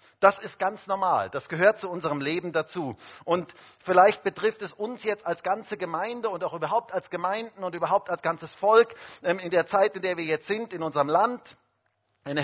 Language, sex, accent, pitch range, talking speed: German, male, German, 145-195 Hz, 200 wpm